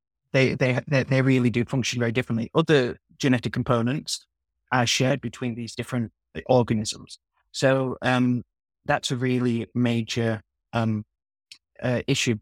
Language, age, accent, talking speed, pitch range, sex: English, 30-49, British, 125 wpm, 115-130 Hz, male